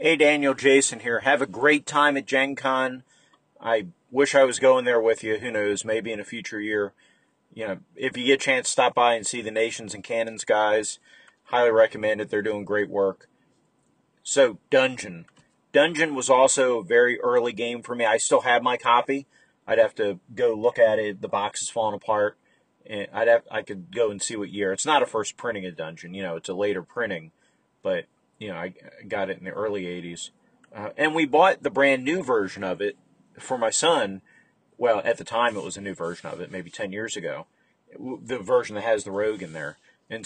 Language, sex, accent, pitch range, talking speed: English, male, American, 110-145 Hz, 220 wpm